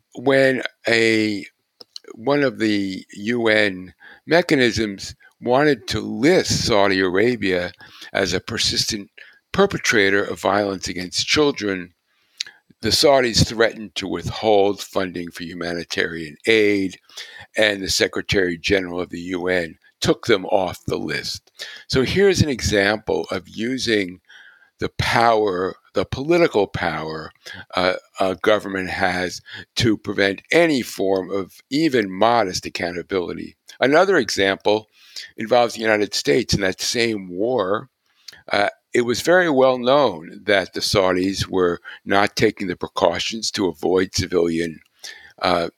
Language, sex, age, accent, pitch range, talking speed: English, male, 60-79, American, 90-120 Hz, 120 wpm